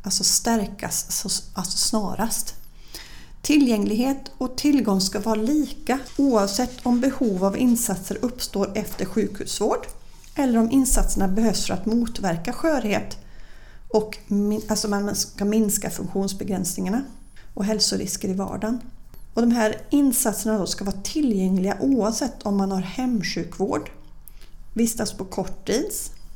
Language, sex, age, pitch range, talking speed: English, female, 30-49, 195-235 Hz, 120 wpm